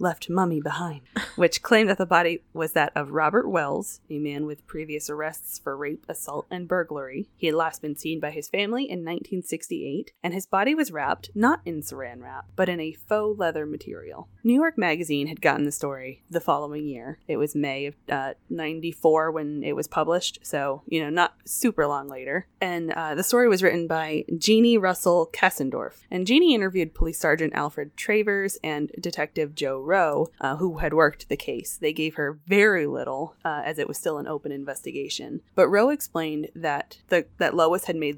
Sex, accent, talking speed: female, American, 195 wpm